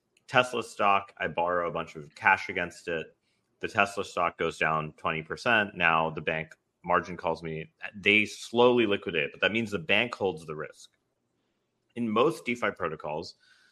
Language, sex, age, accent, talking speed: English, male, 30-49, American, 160 wpm